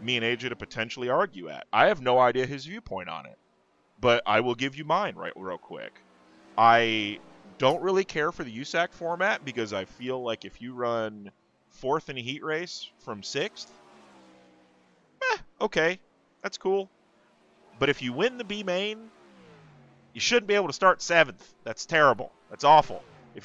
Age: 30-49